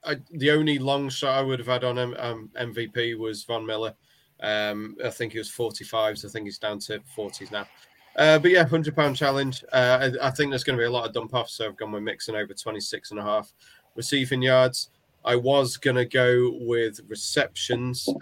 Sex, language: male, English